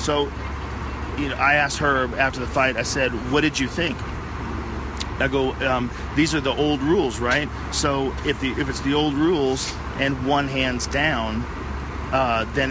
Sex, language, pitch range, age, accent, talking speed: male, English, 120-145 Hz, 40-59, American, 180 wpm